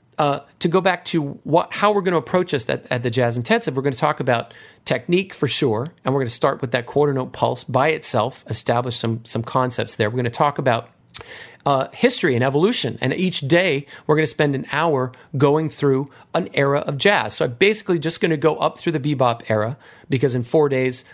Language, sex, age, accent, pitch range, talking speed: English, male, 40-59, American, 130-175 Hz, 235 wpm